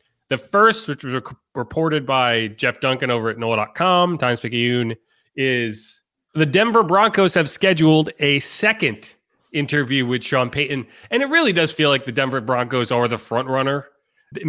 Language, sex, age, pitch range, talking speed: English, male, 30-49, 130-165 Hz, 165 wpm